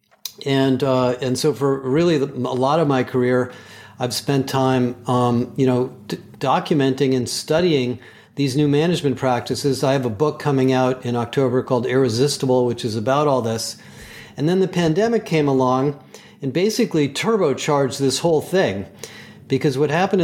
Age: 40-59